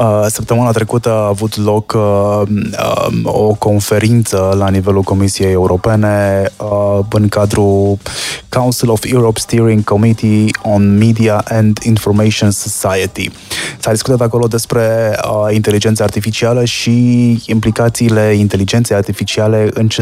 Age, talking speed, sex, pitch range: 20-39, 115 wpm, male, 100-115 Hz